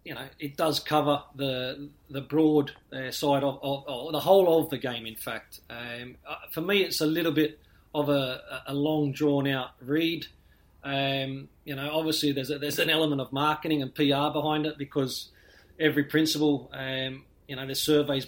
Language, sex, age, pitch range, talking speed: English, male, 30-49, 135-155 Hz, 190 wpm